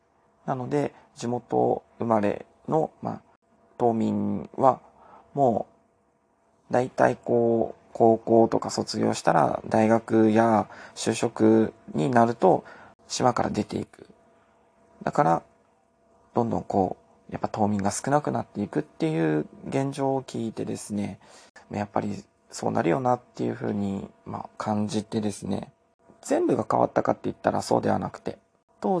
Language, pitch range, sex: Japanese, 100-120 Hz, male